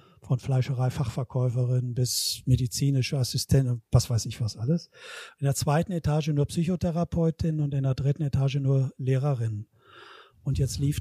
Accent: German